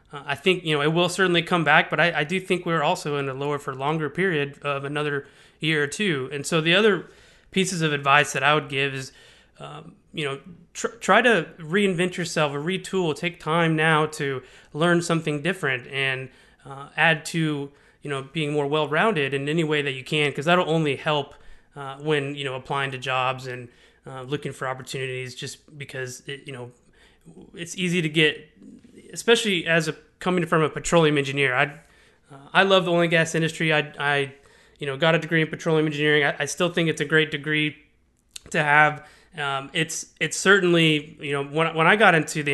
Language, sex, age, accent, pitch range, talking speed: English, male, 30-49, American, 140-170 Hz, 200 wpm